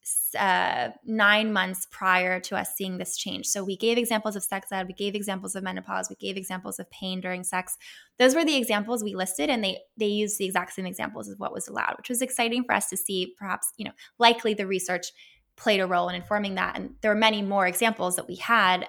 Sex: female